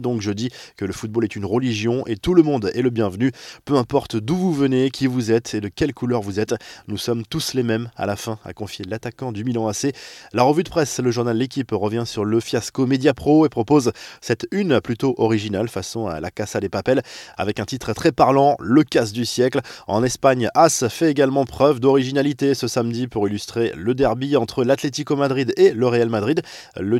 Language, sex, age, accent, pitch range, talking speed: French, male, 20-39, French, 110-135 Hz, 220 wpm